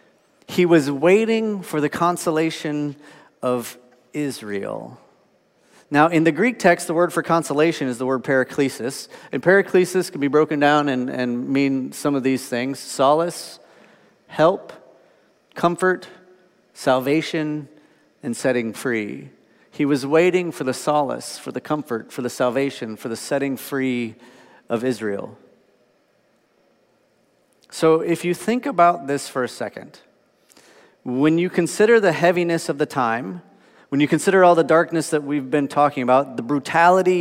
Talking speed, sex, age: 145 wpm, male, 40-59